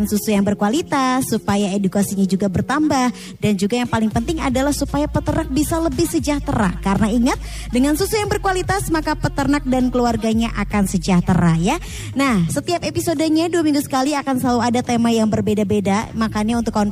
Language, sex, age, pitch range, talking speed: Indonesian, male, 20-39, 215-295 Hz, 165 wpm